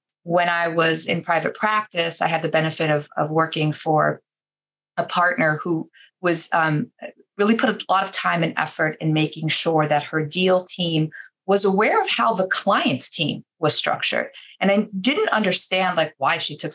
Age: 20-39